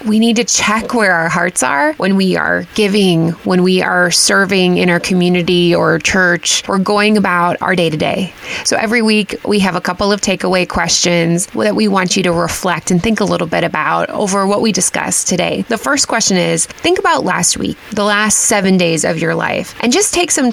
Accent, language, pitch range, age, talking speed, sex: American, English, 175-210 Hz, 20-39, 215 wpm, female